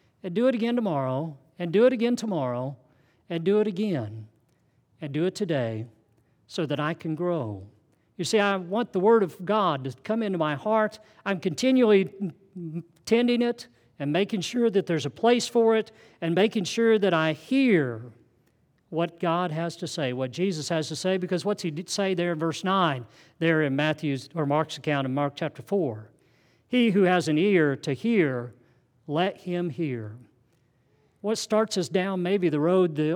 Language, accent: English, American